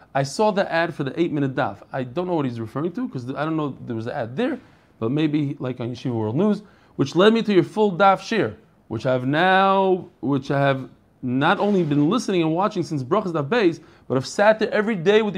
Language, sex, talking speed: English, male, 240 wpm